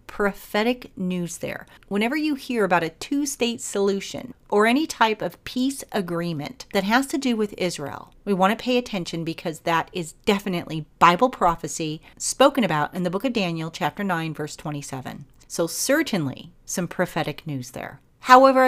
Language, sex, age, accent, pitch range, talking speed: English, female, 40-59, American, 160-215 Hz, 165 wpm